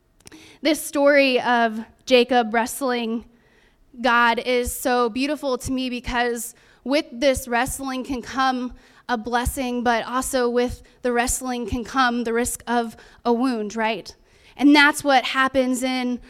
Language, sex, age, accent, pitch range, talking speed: English, female, 20-39, American, 245-290 Hz, 135 wpm